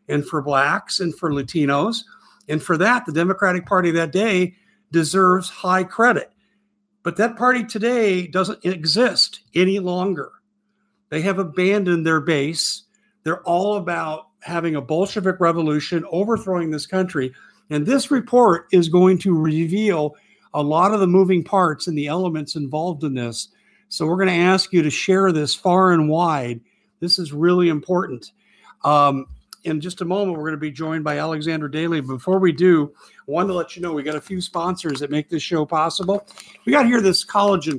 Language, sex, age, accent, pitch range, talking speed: English, male, 50-69, American, 155-195 Hz, 175 wpm